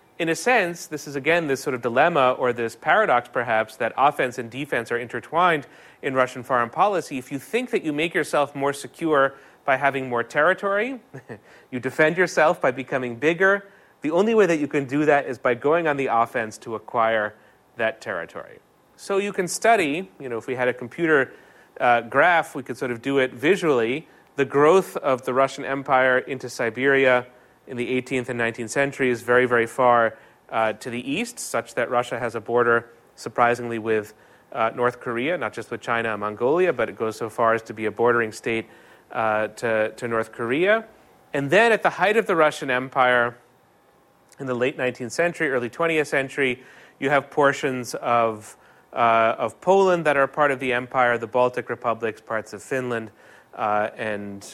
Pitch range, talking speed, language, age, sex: 115-145 Hz, 190 wpm, English, 30-49, male